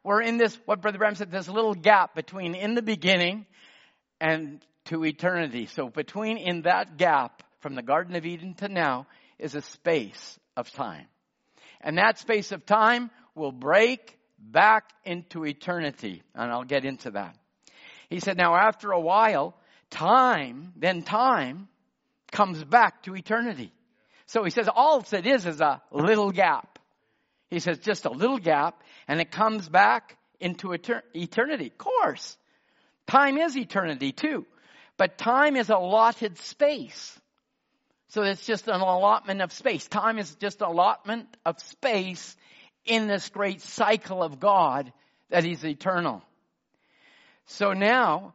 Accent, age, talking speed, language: American, 50-69, 150 wpm, English